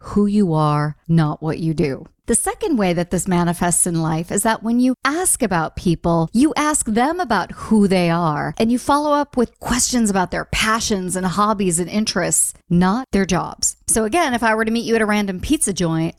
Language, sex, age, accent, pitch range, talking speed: English, female, 40-59, American, 170-235 Hz, 215 wpm